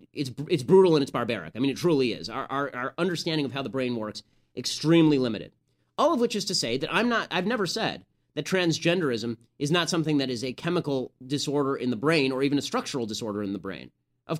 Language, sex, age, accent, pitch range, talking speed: English, male, 30-49, American, 125-165 Hz, 235 wpm